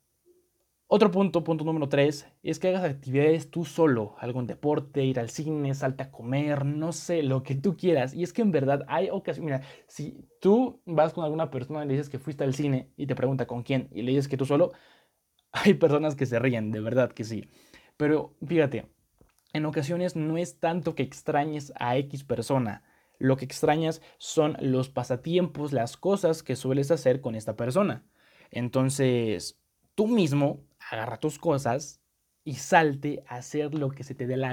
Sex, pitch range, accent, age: male, 125-160 Hz, Mexican, 20-39